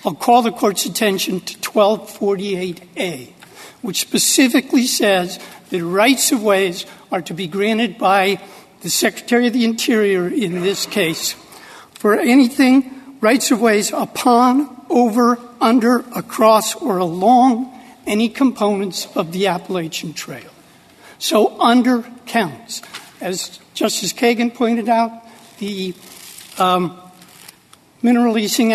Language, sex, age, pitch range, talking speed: English, male, 60-79, 190-235 Hz, 115 wpm